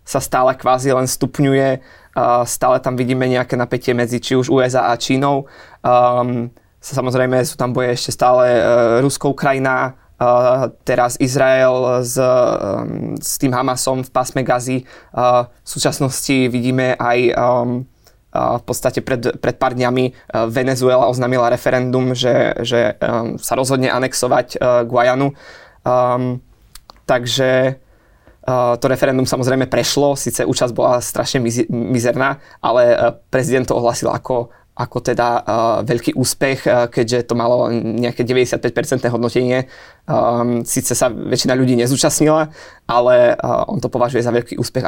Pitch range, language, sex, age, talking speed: 120-130 Hz, Slovak, male, 20-39, 130 wpm